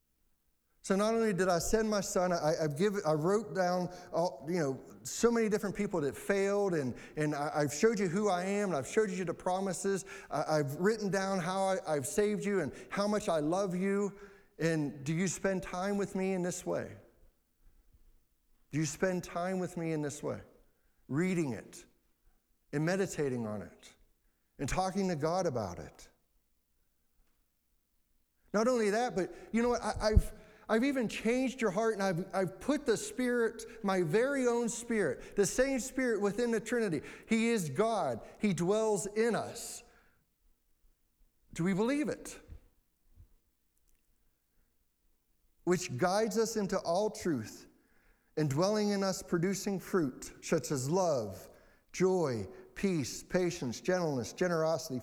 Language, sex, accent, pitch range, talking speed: English, male, American, 155-210 Hz, 160 wpm